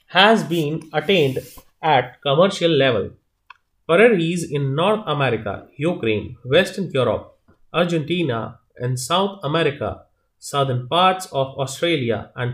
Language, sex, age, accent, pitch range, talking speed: English, male, 30-49, Indian, 115-165 Hz, 105 wpm